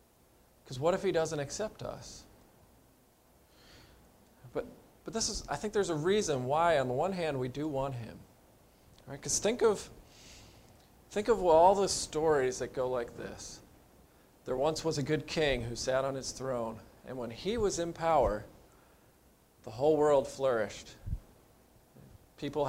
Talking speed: 160 wpm